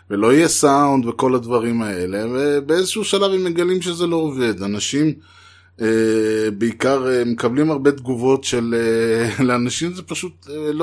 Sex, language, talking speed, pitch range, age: male, Hebrew, 125 wpm, 110-145 Hz, 20-39